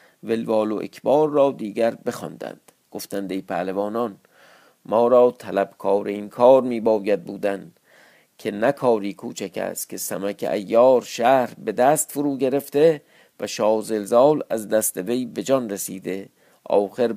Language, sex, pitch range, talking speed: Persian, male, 100-135 Hz, 135 wpm